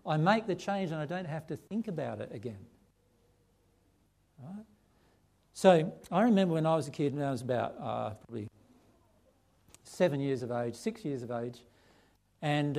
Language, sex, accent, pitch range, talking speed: English, male, Australian, 125-185 Hz, 175 wpm